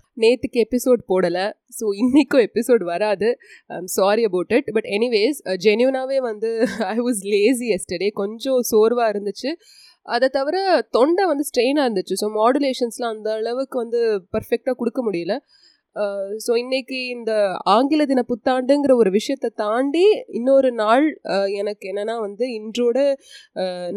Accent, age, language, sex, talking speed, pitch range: native, 20-39, Tamil, female, 130 wpm, 215-275 Hz